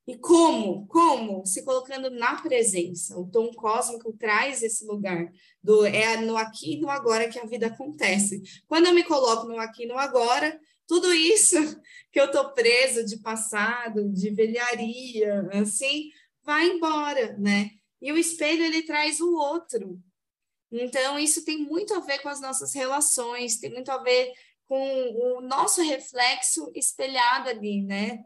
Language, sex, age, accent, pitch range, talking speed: Portuguese, female, 20-39, Brazilian, 225-320 Hz, 160 wpm